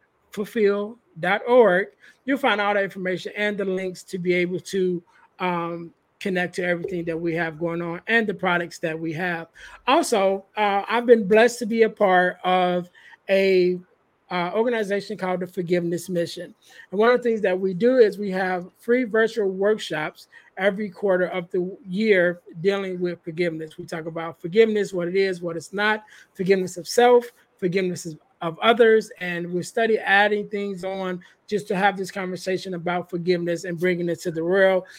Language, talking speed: English, 175 wpm